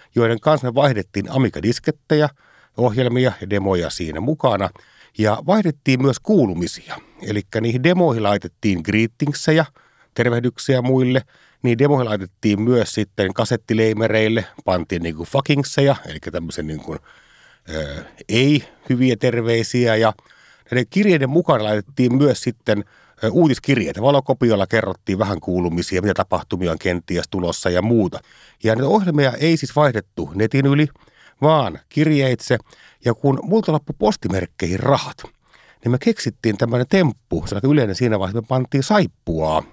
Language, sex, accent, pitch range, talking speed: Finnish, male, native, 100-140 Hz, 120 wpm